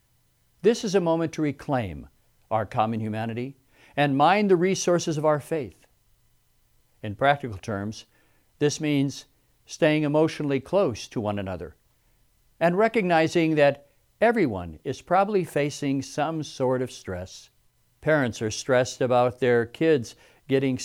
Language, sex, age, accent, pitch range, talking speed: English, male, 60-79, American, 120-155 Hz, 130 wpm